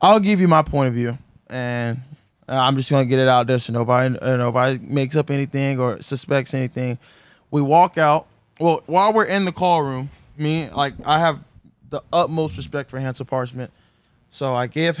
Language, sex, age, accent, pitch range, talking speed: English, male, 20-39, American, 130-160 Hz, 190 wpm